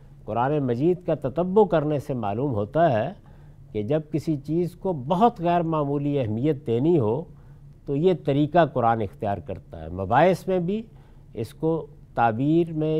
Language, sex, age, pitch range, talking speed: Urdu, male, 50-69, 125-175 Hz, 155 wpm